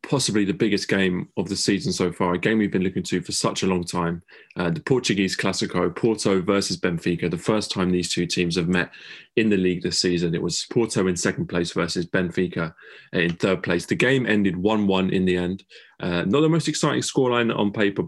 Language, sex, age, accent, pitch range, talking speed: English, male, 20-39, British, 90-110 Hz, 220 wpm